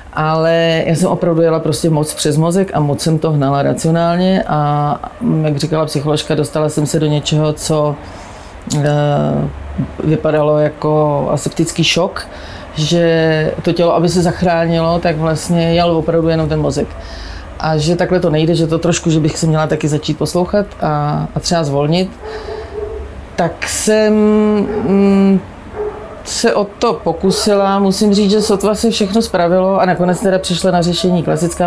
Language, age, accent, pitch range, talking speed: Czech, 30-49, native, 155-185 Hz, 155 wpm